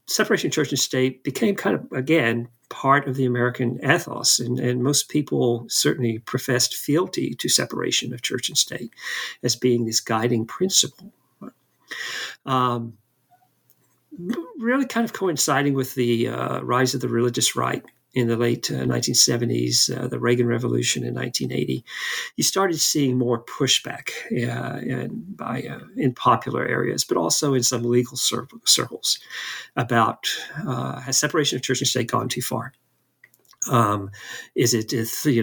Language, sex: English, male